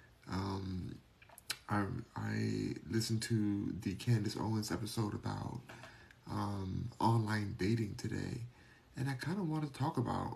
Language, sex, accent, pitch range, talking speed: English, male, American, 110-120 Hz, 125 wpm